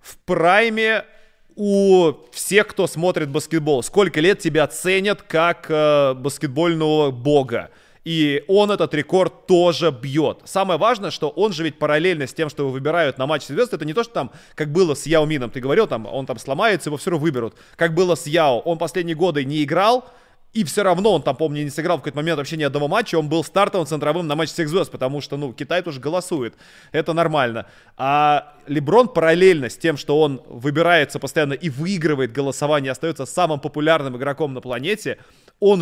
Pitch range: 145-175 Hz